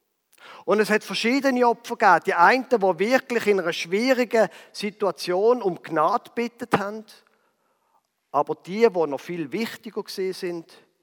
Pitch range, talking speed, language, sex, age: 175-245 Hz, 135 wpm, German, male, 50-69